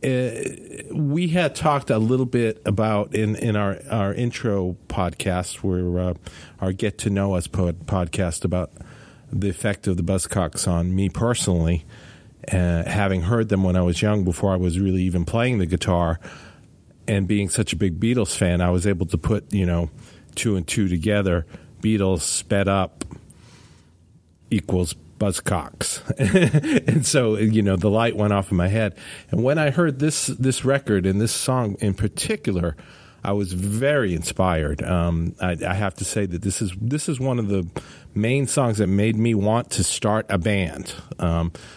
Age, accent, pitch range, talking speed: 50-69, American, 90-115 Hz, 175 wpm